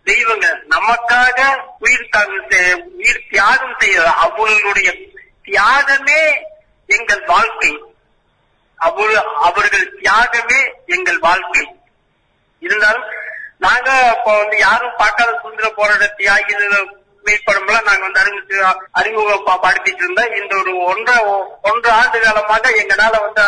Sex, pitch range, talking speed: male, 190-260 Hz, 95 wpm